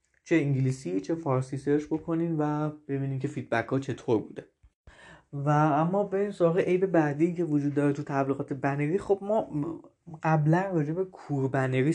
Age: 20-39